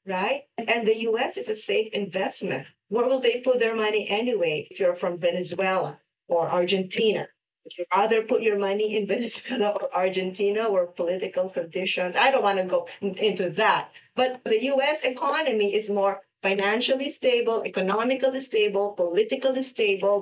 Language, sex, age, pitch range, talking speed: English, female, 50-69, 195-250 Hz, 155 wpm